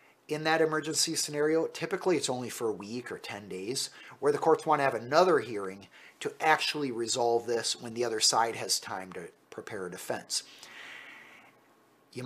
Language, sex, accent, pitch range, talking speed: English, male, American, 120-165 Hz, 175 wpm